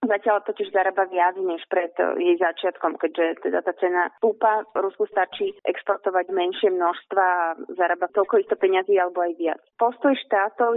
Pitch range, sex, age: 185-225 Hz, female, 20-39